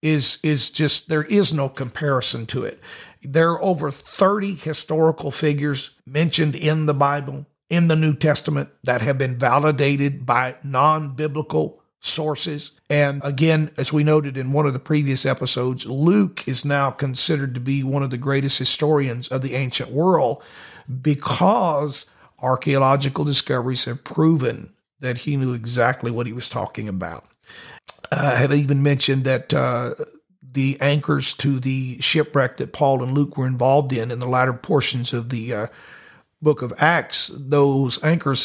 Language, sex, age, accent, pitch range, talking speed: English, male, 50-69, American, 130-150 Hz, 155 wpm